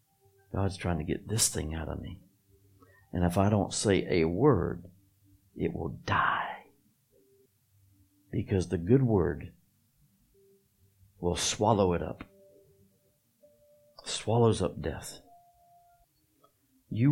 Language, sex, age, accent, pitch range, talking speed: English, male, 60-79, American, 85-110 Hz, 110 wpm